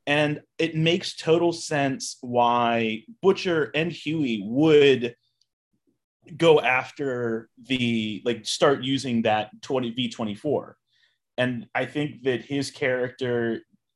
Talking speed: 105 wpm